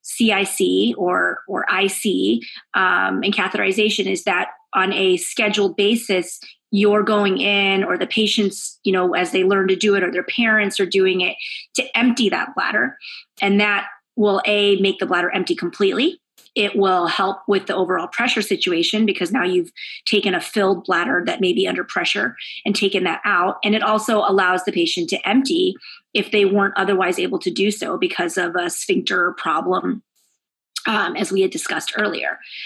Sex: female